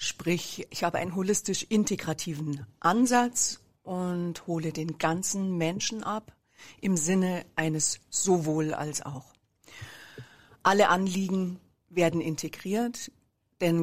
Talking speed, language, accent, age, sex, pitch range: 90 wpm, German, German, 50-69, female, 160-190 Hz